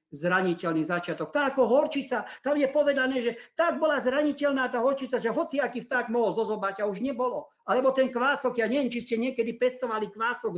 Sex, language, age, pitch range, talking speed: male, Slovak, 50-69, 180-245 Hz, 185 wpm